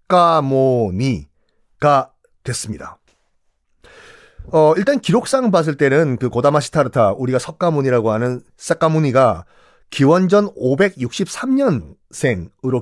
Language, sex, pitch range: Korean, male, 120-165 Hz